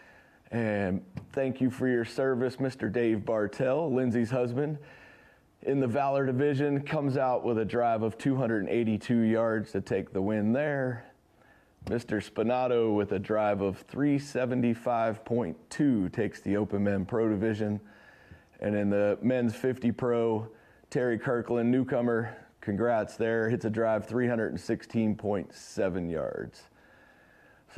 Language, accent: English, American